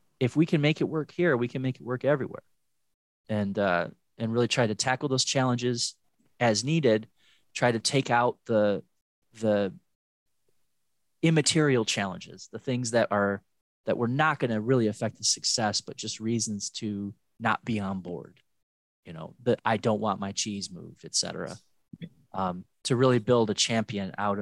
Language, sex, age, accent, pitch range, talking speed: English, male, 20-39, American, 105-130 Hz, 175 wpm